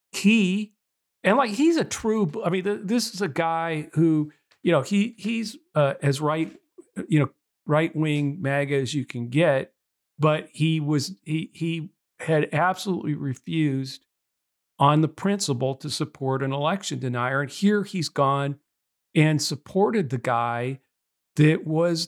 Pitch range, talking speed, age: 135-170 Hz, 150 wpm, 50-69